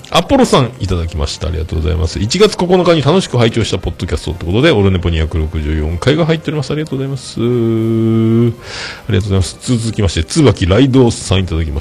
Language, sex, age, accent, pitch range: Japanese, male, 40-59, native, 85-115 Hz